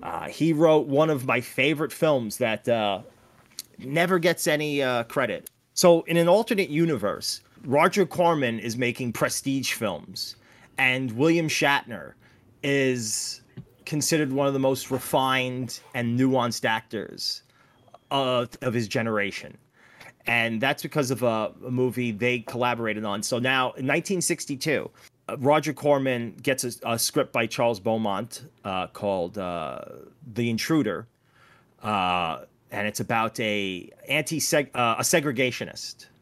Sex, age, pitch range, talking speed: male, 30-49, 115-140 Hz, 135 wpm